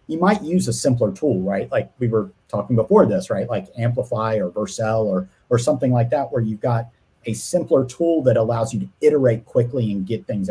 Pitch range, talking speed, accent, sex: 100-145 Hz, 215 wpm, American, male